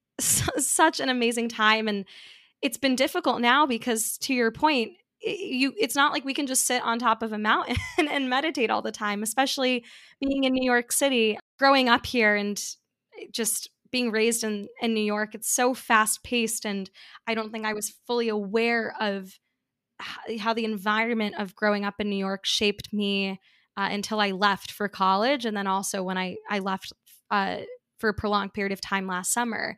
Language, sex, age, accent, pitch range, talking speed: English, female, 10-29, American, 205-240 Hz, 190 wpm